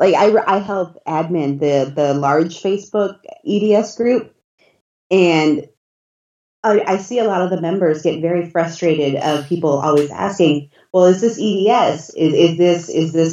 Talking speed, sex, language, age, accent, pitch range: 160 wpm, female, English, 30-49, American, 150-180 Hz